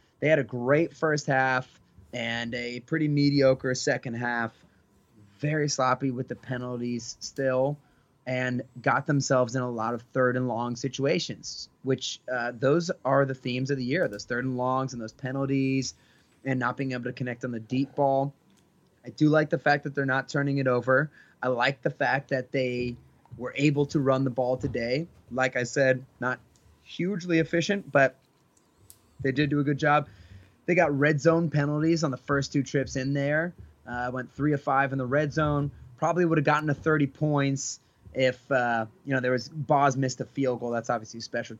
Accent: American